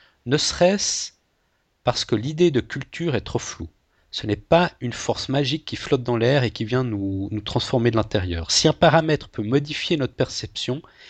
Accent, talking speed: French, 190 wpm